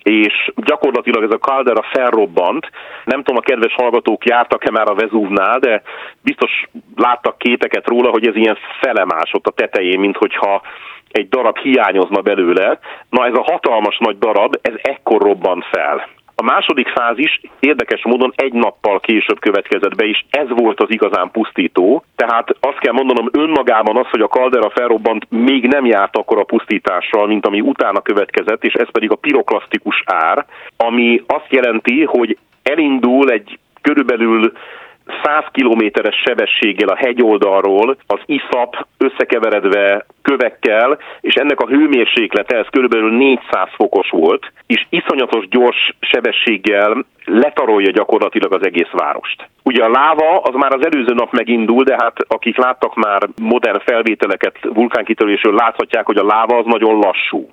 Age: 40-59